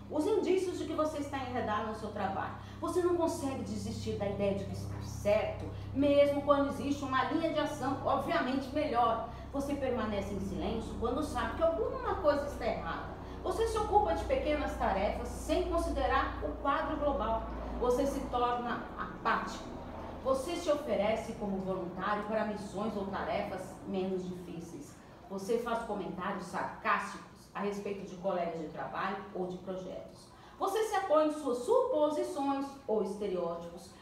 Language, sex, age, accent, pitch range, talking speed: Portuguese, female, 40-59, Brazilian, 195-285 Hz, 155 wpm